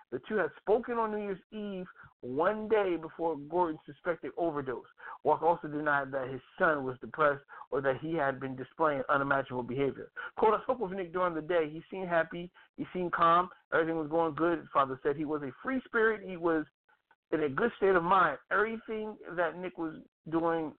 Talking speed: 200 wpm